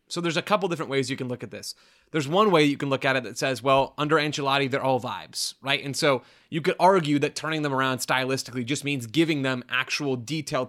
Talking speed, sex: 245 wpm, male